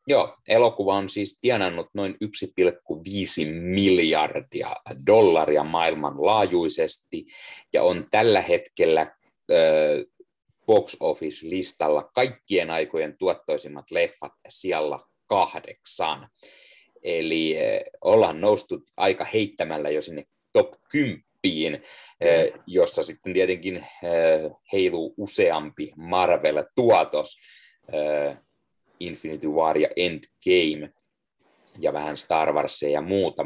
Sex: male